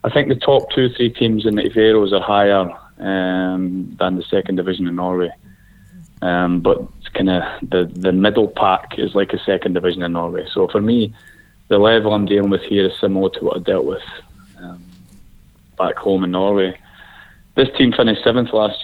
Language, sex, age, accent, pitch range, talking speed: English, male, 20-39, British, 90-100 Hz, 195 wpm